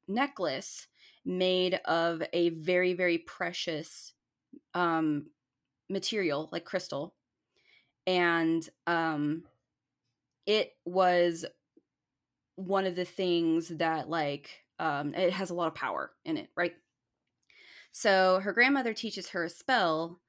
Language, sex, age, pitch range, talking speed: English, female, 20-39, 170-225 Hz, 110 wpm